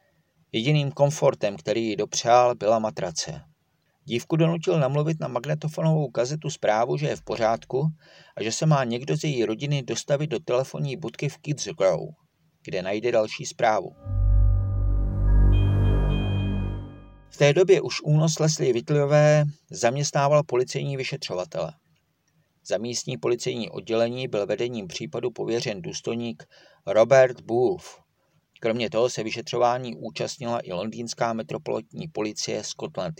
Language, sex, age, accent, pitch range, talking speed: Czech, male, 40-59, native, 115-155 Hz, 125 wpm